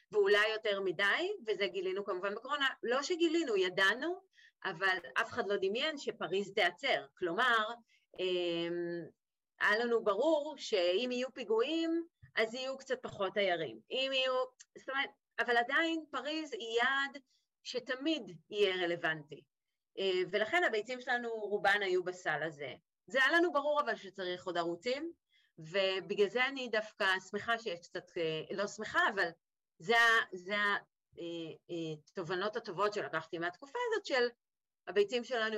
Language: Hebrew